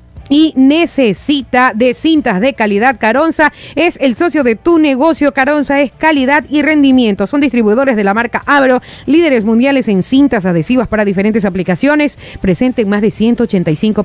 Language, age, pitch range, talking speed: Spanish, 40-59, 220-290 Hz, 160 wpm